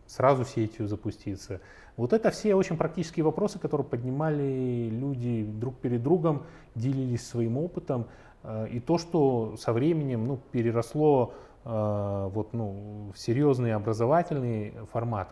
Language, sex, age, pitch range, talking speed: Russian, male, 30-49, 105-130 Hz, 115 wpm